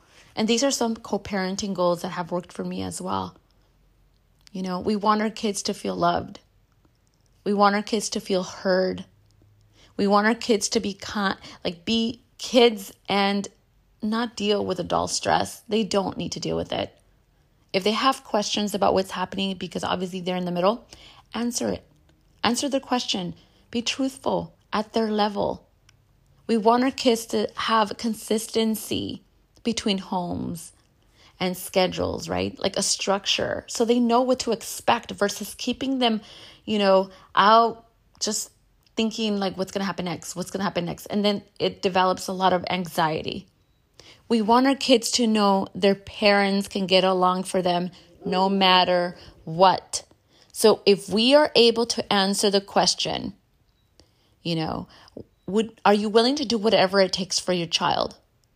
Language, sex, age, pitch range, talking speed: English, female, 30-49, 180-225 Hz, 165 wpm